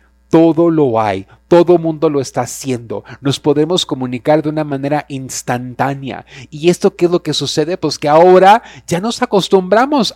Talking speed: 165 wpm